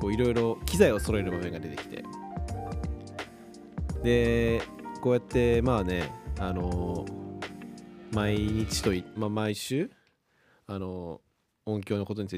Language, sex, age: Japanese, male, 20-39